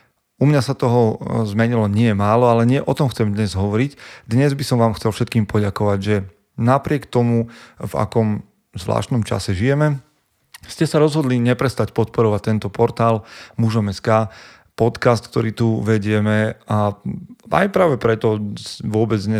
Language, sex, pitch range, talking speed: Slovak, male, 105-120 Hz, 145 wpm